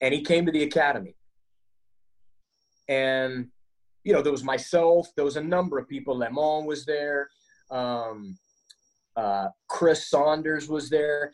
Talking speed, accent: 145 wpm, American